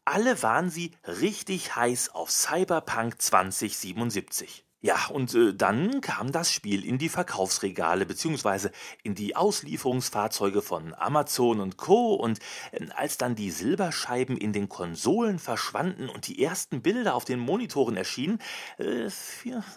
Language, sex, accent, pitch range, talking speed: German, male, German, 115-180 Hz, 135 wpm